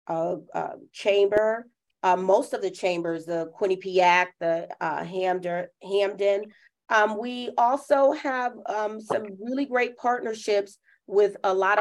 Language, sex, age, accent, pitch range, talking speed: English, female, 40-59, American, 175-200 Hz, 130 wpm